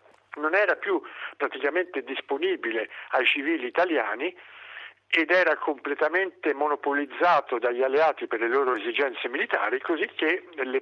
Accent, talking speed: native, 120 wpm